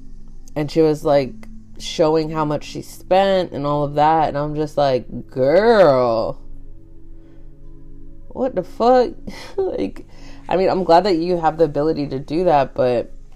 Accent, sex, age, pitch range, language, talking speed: American, female, 20-39, 125-160 Hz, English, 155 wpm